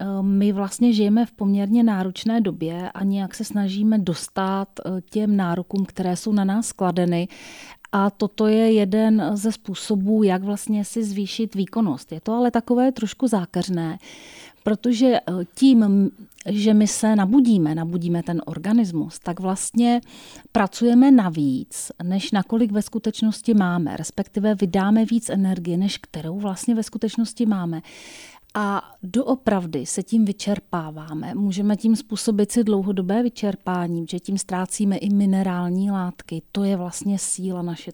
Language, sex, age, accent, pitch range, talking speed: Czech, female, 30-49, native, 180-220 Hz, 135 wpm